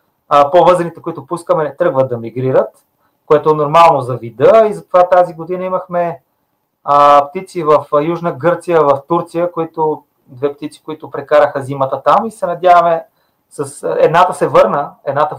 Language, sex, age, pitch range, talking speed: Bulgarian, male, 30-49, 140-180 Hz, 150 wpm